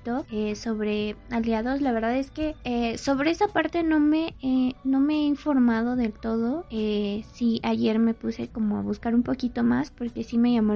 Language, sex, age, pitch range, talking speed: Spanish, female, 20-39, 225-270 Hz, 200 wpm